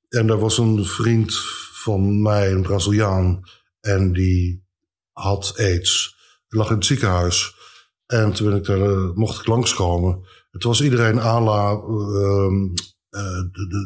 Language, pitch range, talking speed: Dutch, 95-115 Hz, 150 wpm